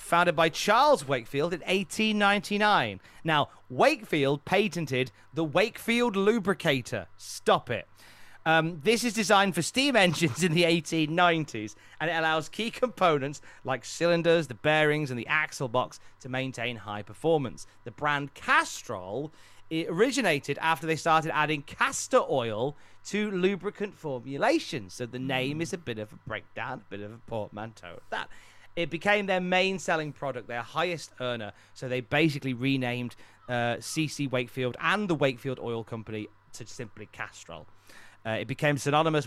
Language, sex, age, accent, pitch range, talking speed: English, male, 30-49, British, 125-175 Hz, 150 wpm